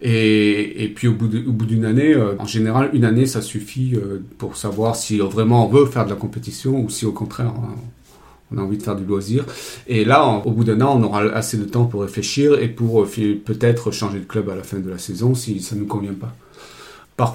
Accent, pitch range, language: French, 105-125 Hz, French